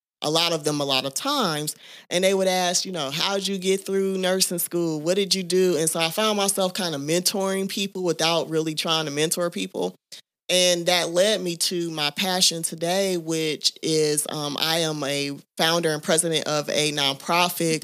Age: 20-39